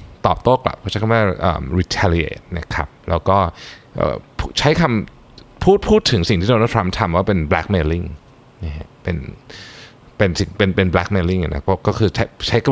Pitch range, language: 85-120 Hz, Thai